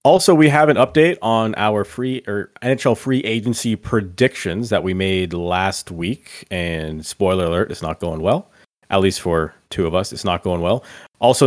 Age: 30-49